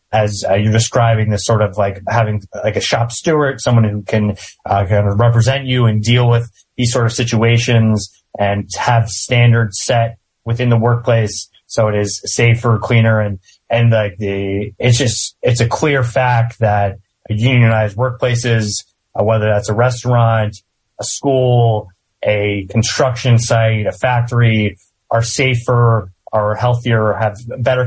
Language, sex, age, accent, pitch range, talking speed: English, male, 30-49, American, 105-120 Hz, 155 wpm